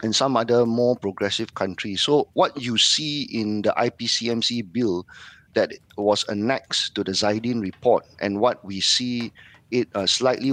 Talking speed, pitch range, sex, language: 160 wpm, 100-125 Hz, male, English